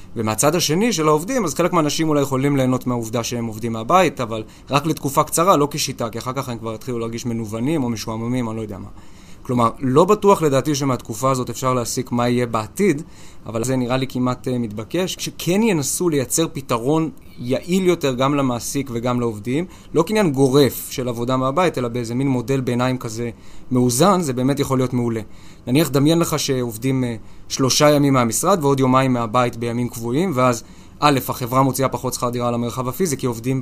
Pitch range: 120-145 Hz